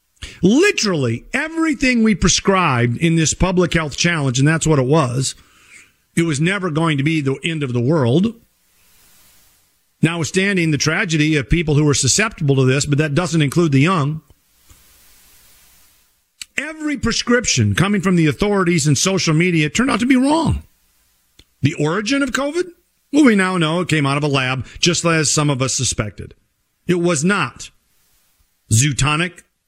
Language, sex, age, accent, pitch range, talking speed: English, male, 50-69, American, 140-195 Hz, 160 wpm